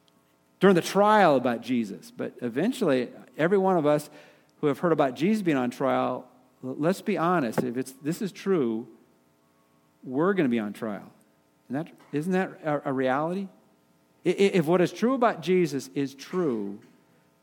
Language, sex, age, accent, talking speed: English, male, 50-69, American, 170 wpm